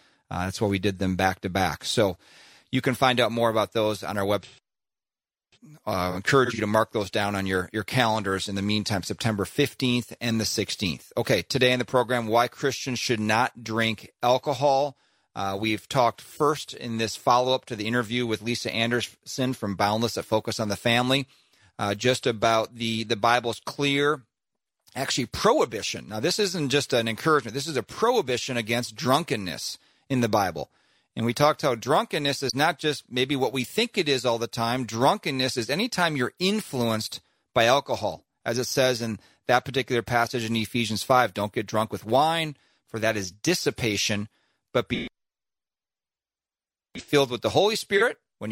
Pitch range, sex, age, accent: 110-135 Hz, male, 40-59, American